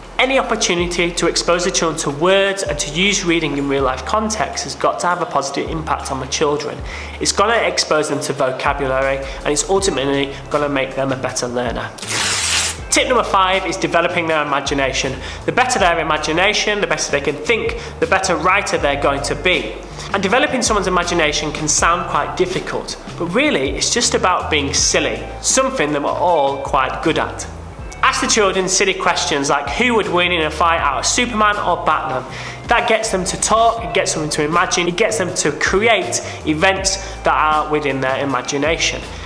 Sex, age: male, 30-49